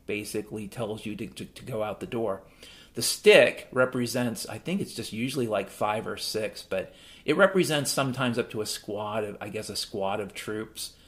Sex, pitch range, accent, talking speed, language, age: male, 120-175 Hz, American, 195 wpm, English, 40-59